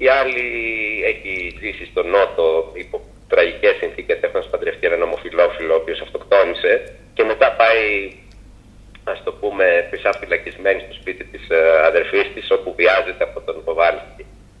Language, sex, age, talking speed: Greek, male, 30-49, 135 wpm